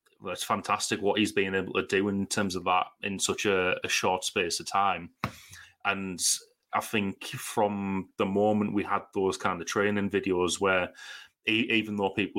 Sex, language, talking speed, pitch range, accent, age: male, English, 185 wpm, 90-100 Hz, British, 30-49